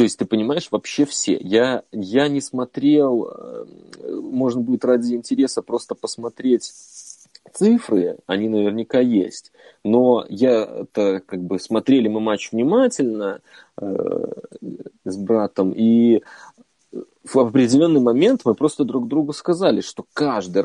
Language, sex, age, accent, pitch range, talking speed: Russian, male, 30-49, native, 110-155 Hz, 120 wpm